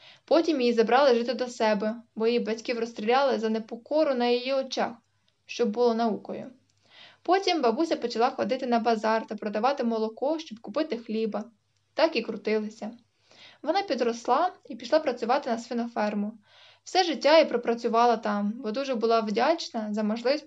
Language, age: Ukrainian, 20-39